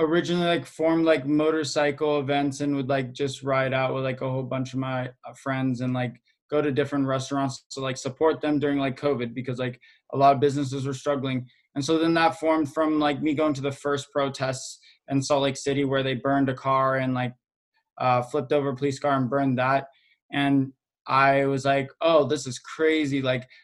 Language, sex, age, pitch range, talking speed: English, male, 20-39, 135-155 Hz, 215 wpm